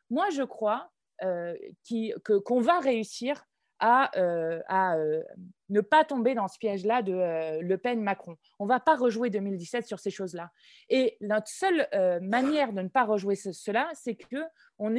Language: French